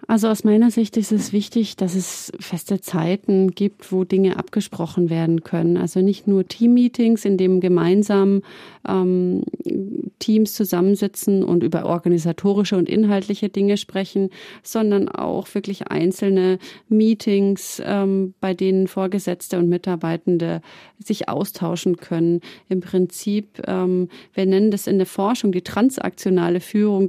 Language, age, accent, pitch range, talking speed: German, 30-49, German, 185-205 Hz, 135 wpm